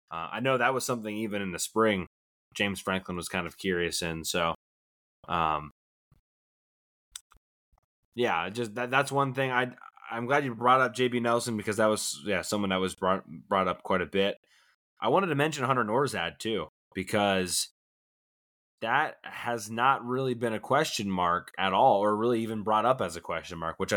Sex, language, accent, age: male, English, American, 20-39